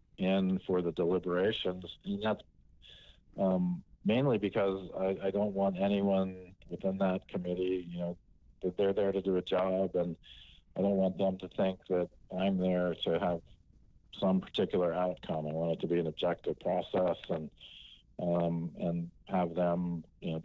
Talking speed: 165 wpm